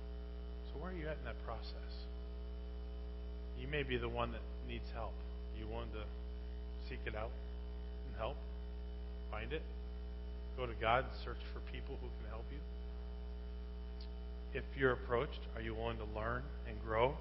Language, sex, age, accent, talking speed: English, male, 40-59, American, 160 wpm